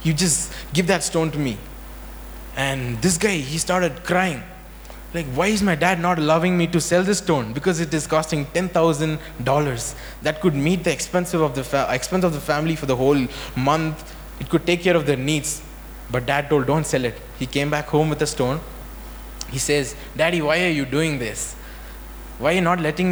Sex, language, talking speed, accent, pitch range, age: male, English, 195 wpm, Indian, 120-160 Hz, 20-39